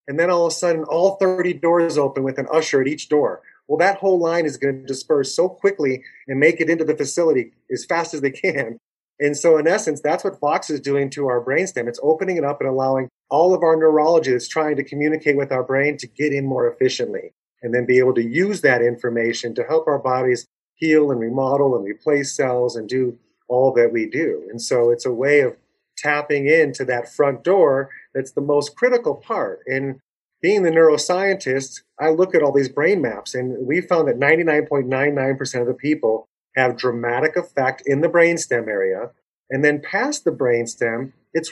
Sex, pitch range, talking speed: male, 130-170 Hz, 205 wpm